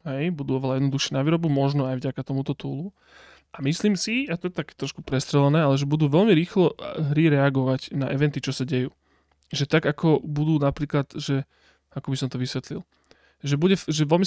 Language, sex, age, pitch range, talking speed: Slovak, male, 20-39, 135-150 Hz, 195 wpm